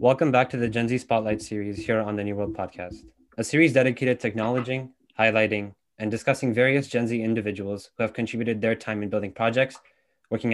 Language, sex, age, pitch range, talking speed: English, male, 20-39, 105-125 Hz, 200 wpm